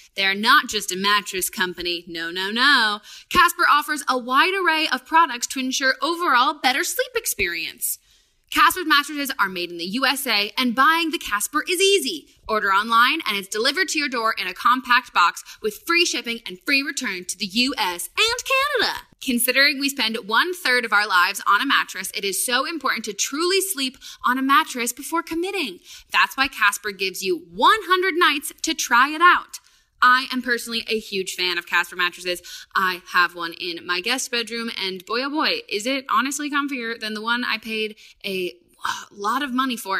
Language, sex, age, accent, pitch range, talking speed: English, female, 20-39, American, 200-300 Hz, 190 wpm